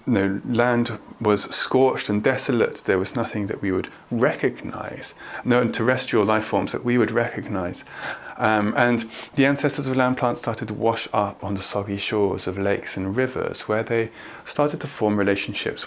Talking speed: 175 wpm